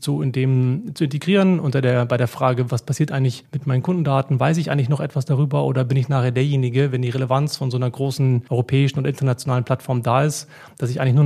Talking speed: 235 wpm